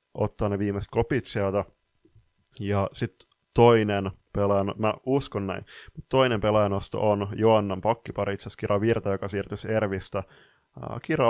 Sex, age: male, 20-39